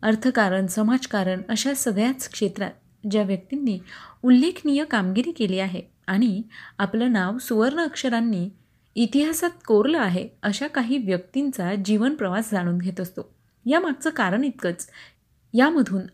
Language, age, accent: Marathi, 30-49, native